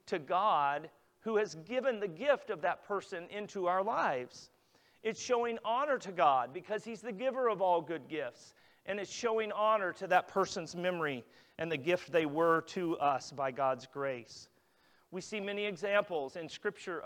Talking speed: 175 wpm